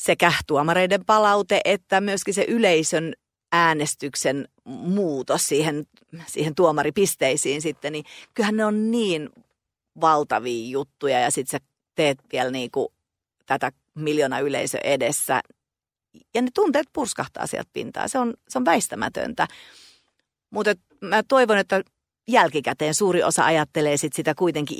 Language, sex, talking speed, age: Finnish, female, 125 wpm, 40-59